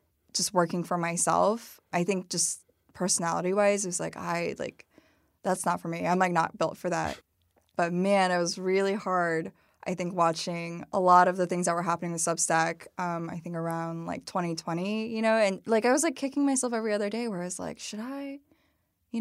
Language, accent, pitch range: English, American, 175-210 Hz